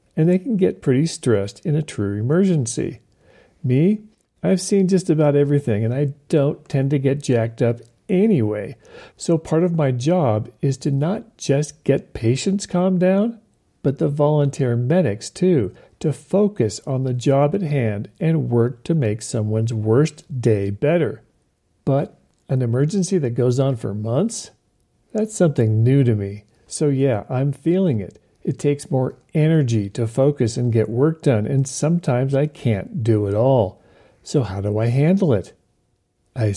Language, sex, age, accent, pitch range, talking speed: English, male, 50-69, American, 115-150 Hz, 165 wpm